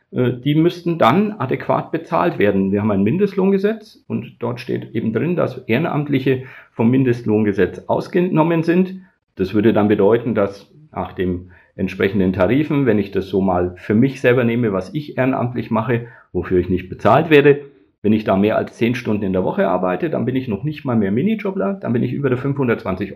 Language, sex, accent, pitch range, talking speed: German, male, German, 100-140 Hz, 190 wpm